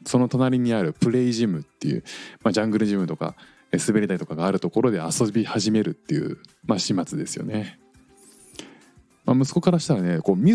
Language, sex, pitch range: Japanese, male, 90-150 Hz